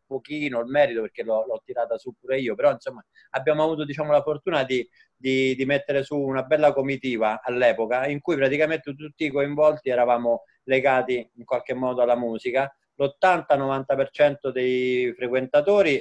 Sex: male